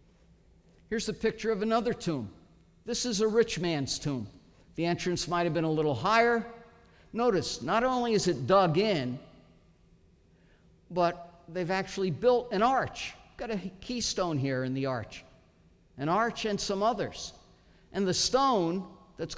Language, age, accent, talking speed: English, 50-69, American, 150 wpm